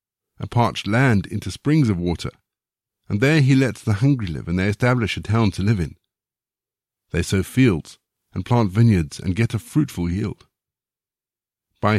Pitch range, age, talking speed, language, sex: 90-120 Hz, 60-79, 170 wpm, English, male